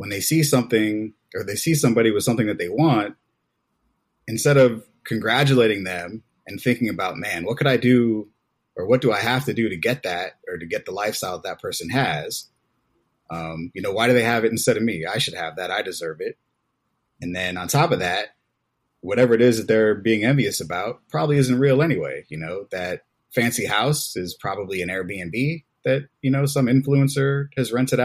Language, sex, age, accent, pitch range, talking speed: English, male, 30-49, American, 105-135 Hz, 205 wpm